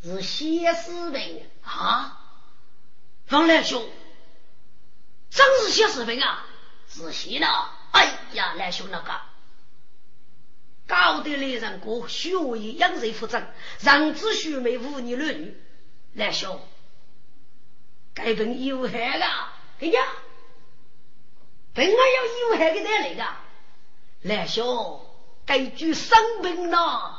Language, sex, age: Chinese, female, 40-59